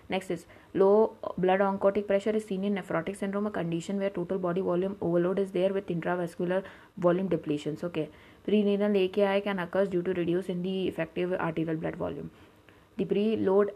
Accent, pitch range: Indian, 170-195 Hz